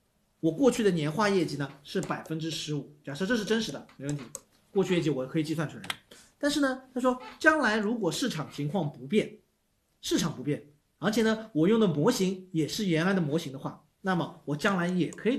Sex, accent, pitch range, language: male, native, 150-210 Hz, Chinese